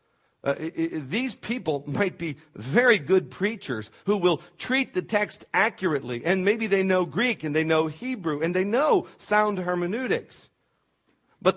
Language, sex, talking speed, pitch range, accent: English, male, 150 wpm, 155-185 Hz, American